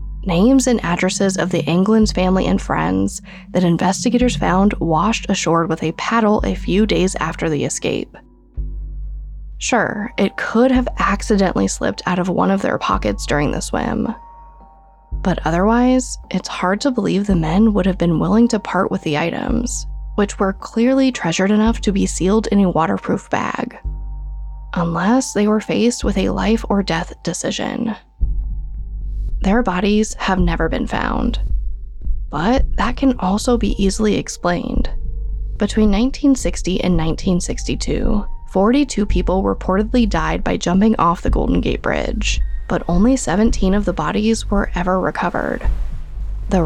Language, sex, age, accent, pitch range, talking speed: English, female, 10-29, American, 175-225 Hz, 150 wpm